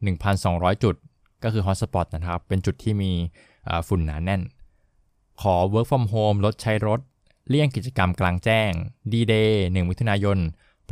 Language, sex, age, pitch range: Thai, male, 20-39, 90-110 Hz